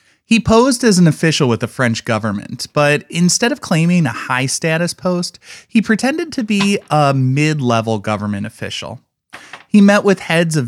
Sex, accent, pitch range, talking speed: male, American, 115-160 Hz, 165 wpm